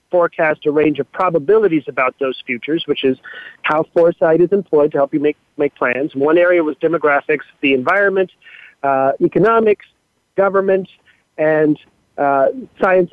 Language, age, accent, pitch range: English, 40-59, American, 145-185 Hz